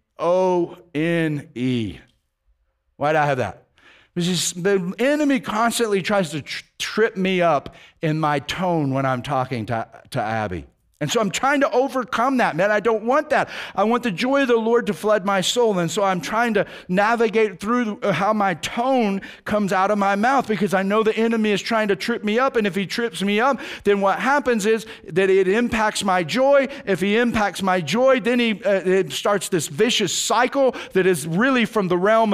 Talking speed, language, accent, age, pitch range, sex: 205 wpm, English, American, 50-69, 190-245 Hz, male